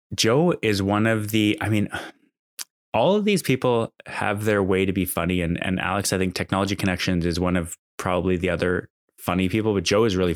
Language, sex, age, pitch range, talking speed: English, male, 20-39, 90-110 Hz, 210 wpm